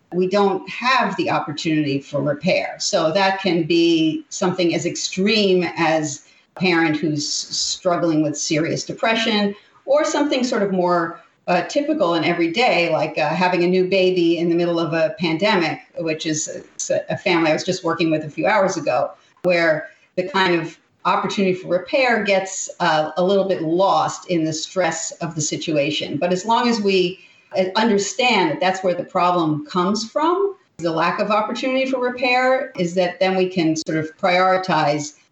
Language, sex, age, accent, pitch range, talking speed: English, female, 50-69, American, 160-195 Hz, 180 wpm